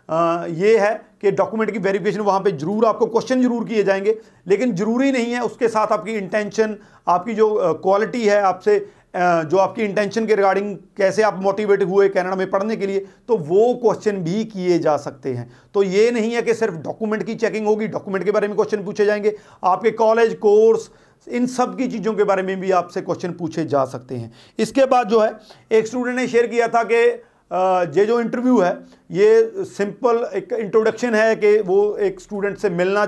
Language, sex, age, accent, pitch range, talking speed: Hindi, male, 40-59, native, 190-225 Hz, 200 wpm